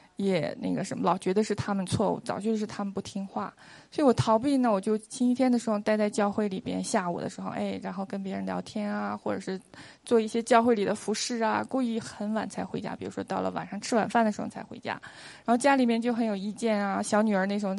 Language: Chinese